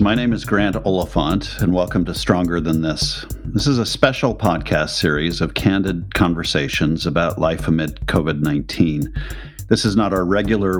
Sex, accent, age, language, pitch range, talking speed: male, American, 50-69, English, 80-105 Hz, 160 wpm